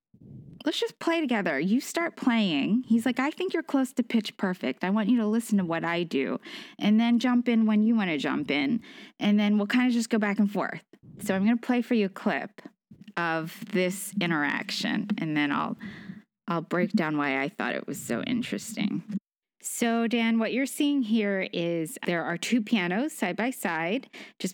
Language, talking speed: English, 210 wpm